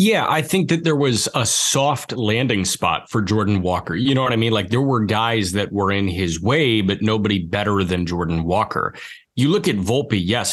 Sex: male